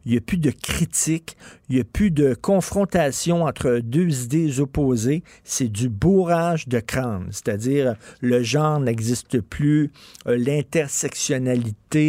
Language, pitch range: French, 125-155 Hz